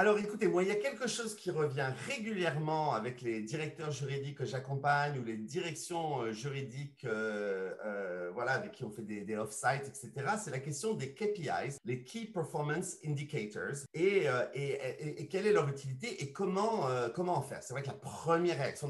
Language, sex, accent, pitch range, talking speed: English, male, French, 120-180 Hz, 200 wpm